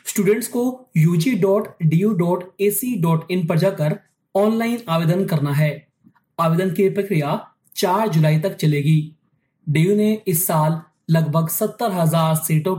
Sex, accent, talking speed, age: male, native, 110 wpm, 30-49